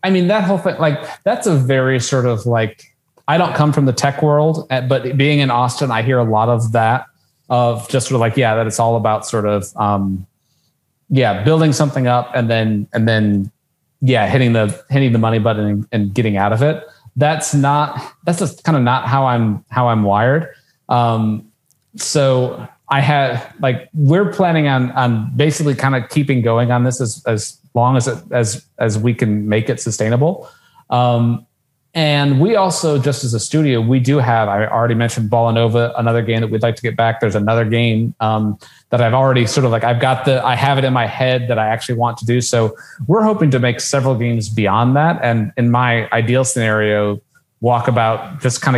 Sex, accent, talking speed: male, American, 205 wpm